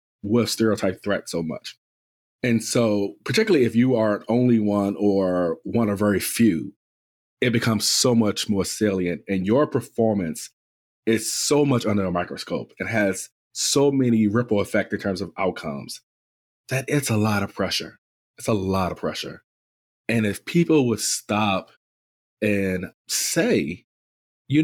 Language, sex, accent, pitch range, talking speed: English, male, American, 90-120 Hz, 150 wpm